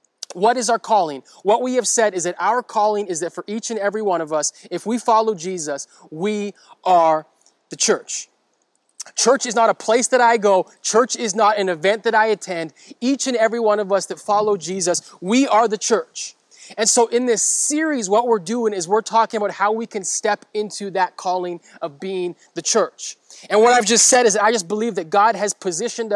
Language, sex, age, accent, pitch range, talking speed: English, male, 30-49, American, 180-230 Hz, 220 wpm